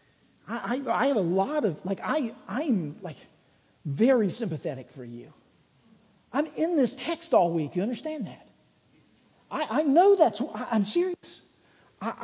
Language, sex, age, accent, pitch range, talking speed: English, male, 50-69, American, 160-230 Hz, 145 wpm